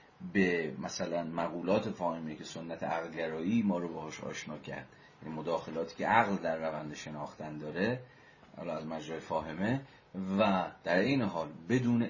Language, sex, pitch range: Persian, male, 85-100 Hz